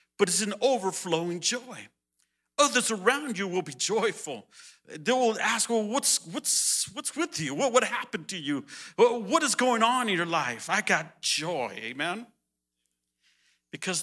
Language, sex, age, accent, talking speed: English, male, 50-69, American, 155 wpm